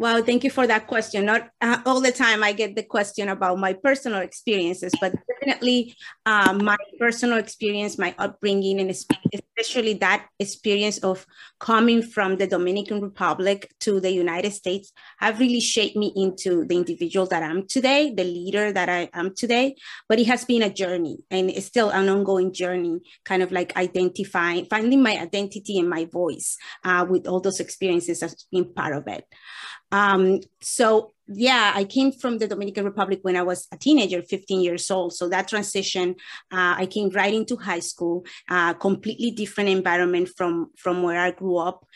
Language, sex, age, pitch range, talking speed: English, female, 30-49, 180-215 Hz, 180 wpm